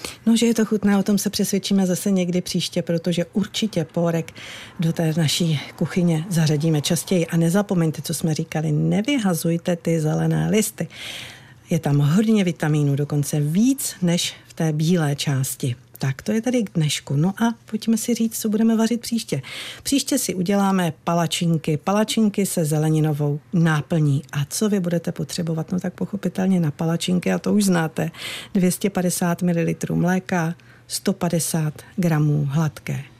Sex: female